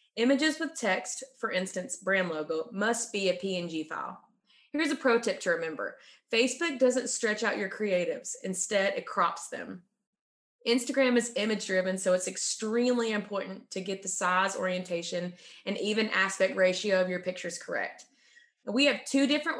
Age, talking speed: 20-39, 160 wpm